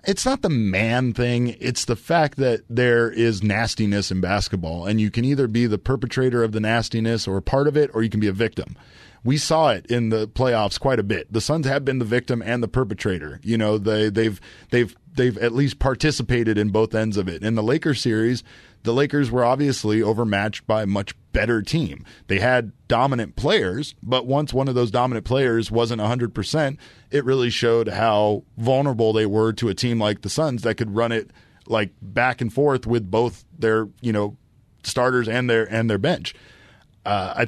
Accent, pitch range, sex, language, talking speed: American, 105-125 Hz, male, English, 205 wpm